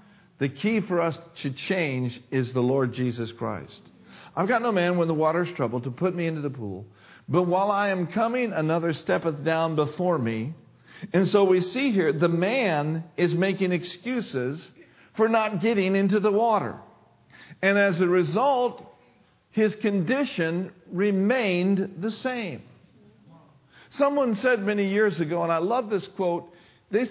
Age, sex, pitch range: 50-69, male, 155-220 Hz